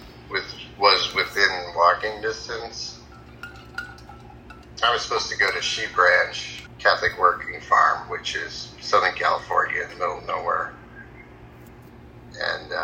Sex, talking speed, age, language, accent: male, 120 wpm, 30-49, English, American